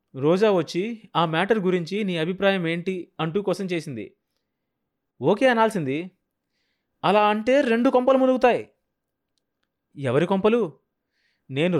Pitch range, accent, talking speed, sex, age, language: 160-225 Hz, native, 105 wpm, male, 30-49, Telugu